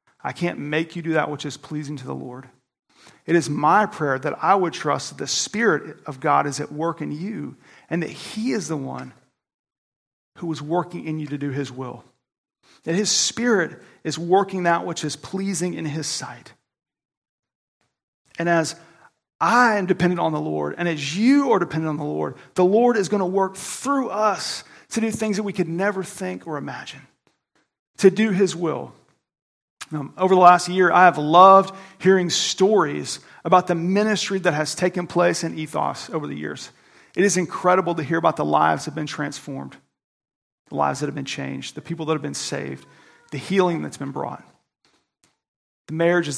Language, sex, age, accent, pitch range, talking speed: English, male, 40-59, American, 155-190 Hz, 190 wpm